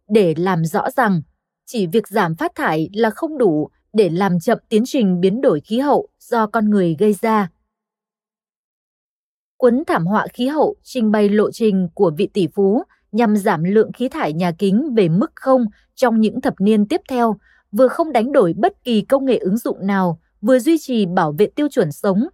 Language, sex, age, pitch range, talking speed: Vietnamese, female, 20-39, 195-255 Hz, 200 wpm